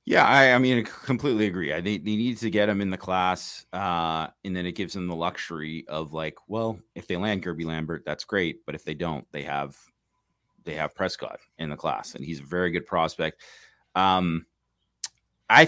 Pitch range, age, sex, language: 90-110 Hz, 30-49, male, English